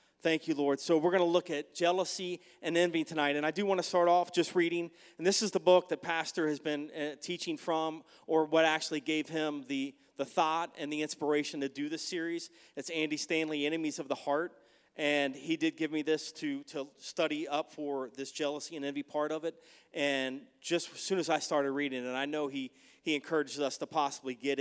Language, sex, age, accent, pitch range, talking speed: English, male, 30-49, American, 140-165 Hz, 225 wpm